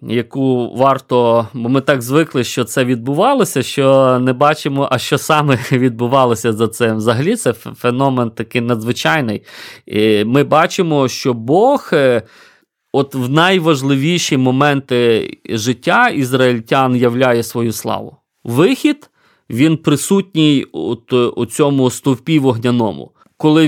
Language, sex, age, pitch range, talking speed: Ukrainian, male, 30-49, 120-155 Hz, 115 wpm